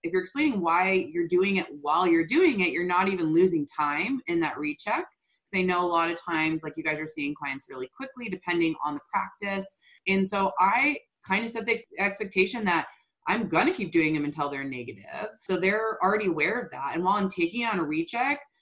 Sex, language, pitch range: female, English, 160-215 Hz